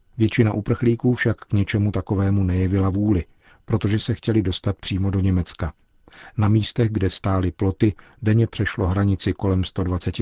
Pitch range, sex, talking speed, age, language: 95-110 Hz, male, 145 wpm, 50-69, Czech